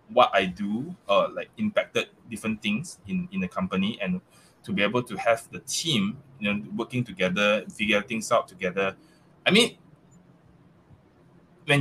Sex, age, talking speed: male, 20-39, 160 wpm